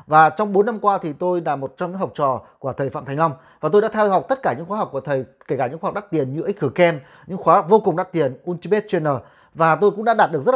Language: Vietnamese